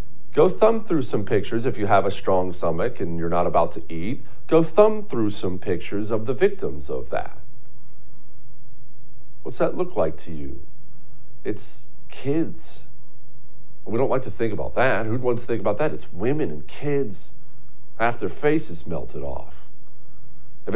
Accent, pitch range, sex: American, 100-155 Hz, male